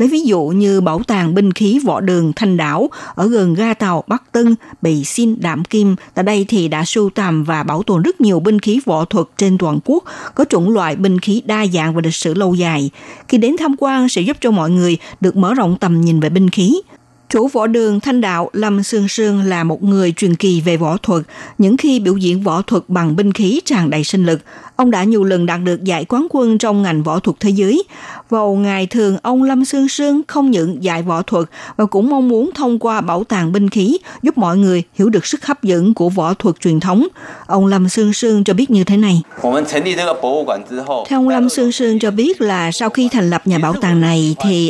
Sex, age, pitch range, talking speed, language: female, 60-79, 175-235 Hz, 235 wpm, Vietnamese